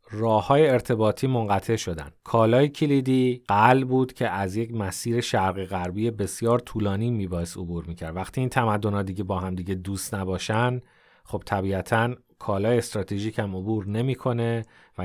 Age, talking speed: 30-49, 145 wpm